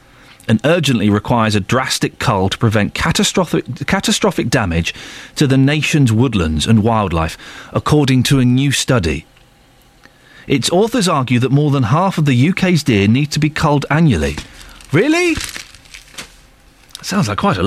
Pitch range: 105-170 Hz